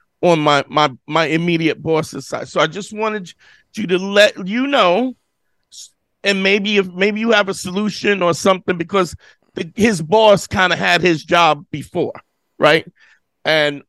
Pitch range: 170-210 Hz